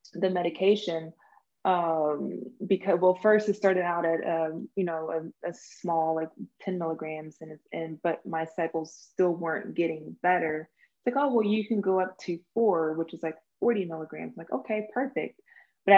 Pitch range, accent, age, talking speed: 165-190 Hz, American, 20-39, 175 wpm